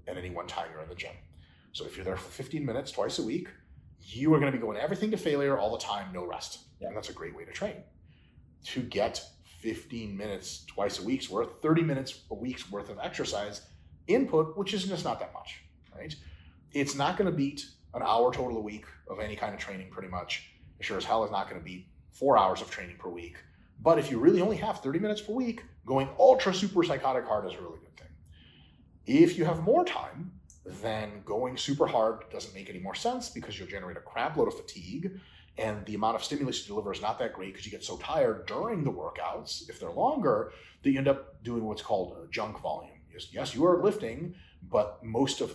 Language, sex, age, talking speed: English, male, 30-49, 230 wpm